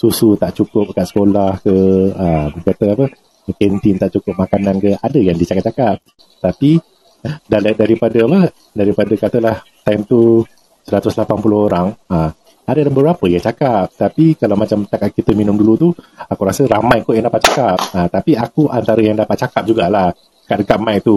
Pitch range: 100-125 Hz